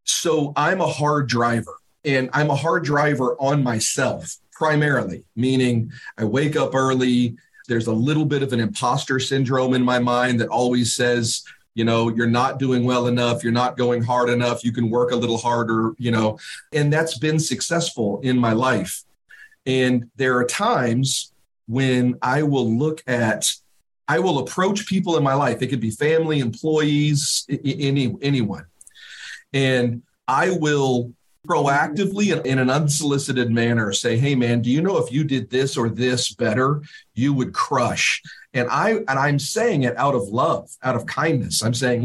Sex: male